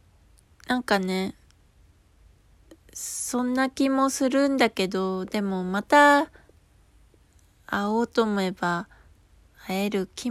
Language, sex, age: Japanese, female, 20-39